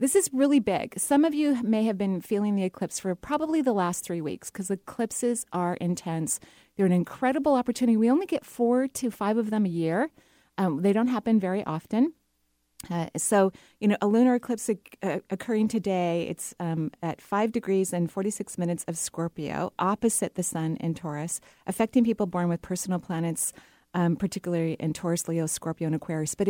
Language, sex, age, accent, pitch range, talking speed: English, female, 30-49, American, 170-230 Hz, 190 wpm